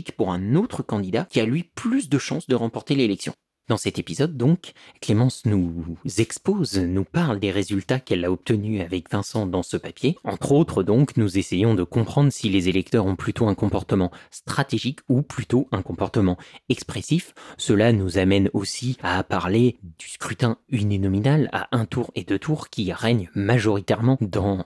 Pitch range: 100-130 Hz